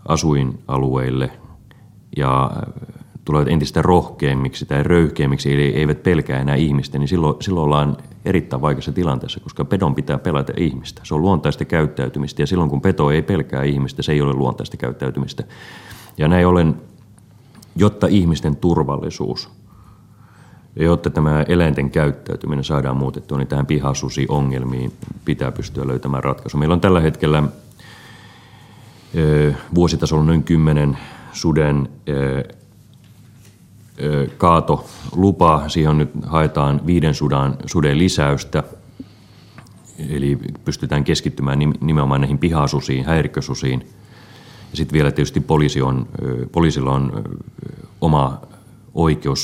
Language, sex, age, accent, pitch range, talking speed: Finnish, male, 30-49, native, 70-85 Hz, 115 wpm